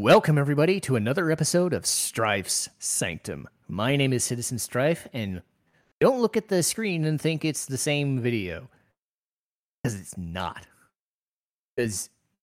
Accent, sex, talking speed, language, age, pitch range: American, male, 140 wpm, English, 30-49, 105-145 Hz